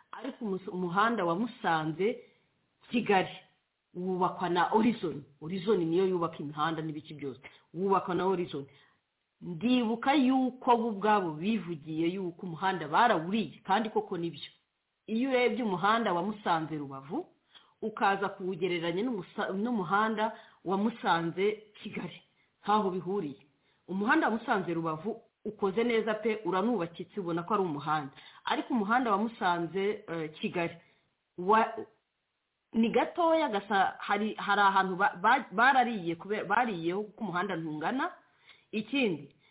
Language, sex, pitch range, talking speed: English, female, 175-235 Hz, 115 wpm